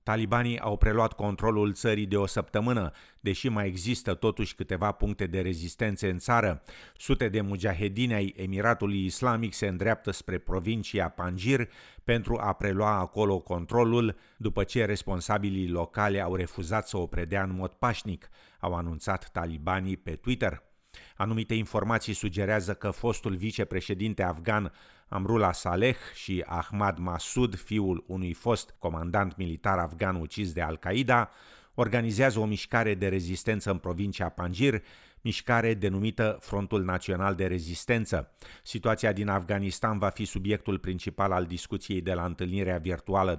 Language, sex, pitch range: Romanian, male, 90-110 Hz